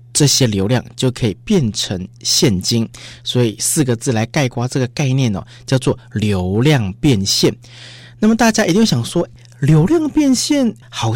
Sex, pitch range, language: male, 115-160 Hz, Chinese